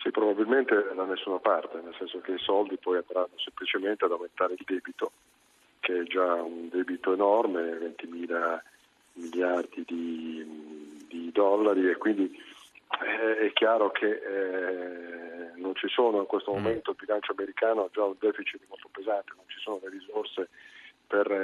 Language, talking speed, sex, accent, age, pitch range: Italian, 155 wpm, male, native, 40-59, 90-110 Hz